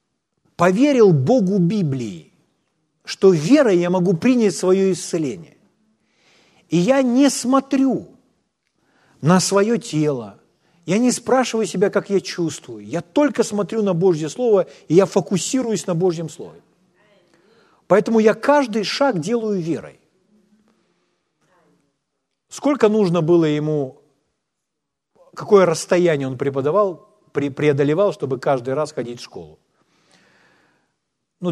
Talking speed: 110 wpm